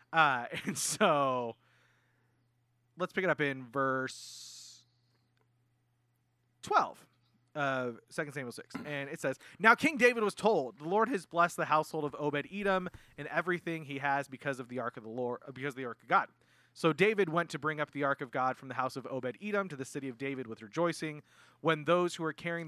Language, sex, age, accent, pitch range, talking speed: English, male, 30-49, American, 125-170 Hz, 195 wpm